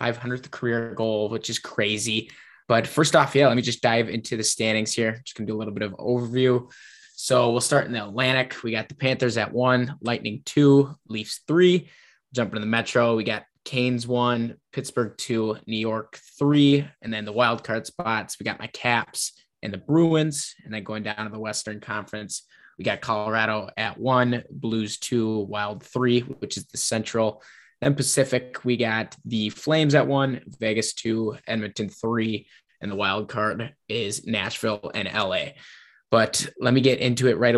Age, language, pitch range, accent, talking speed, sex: 10-29, English, 110-125 Hz, American, 185 wpm, male